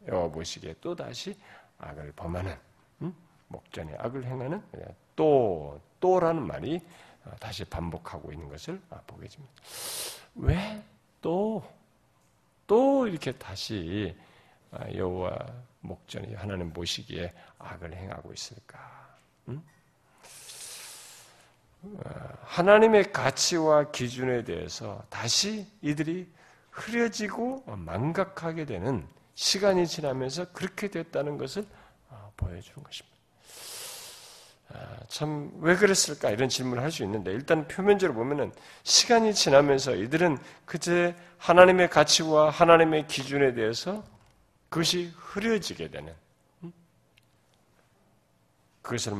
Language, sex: Korean, male